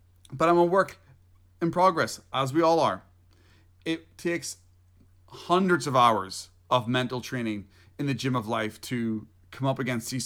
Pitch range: 110-140 Hz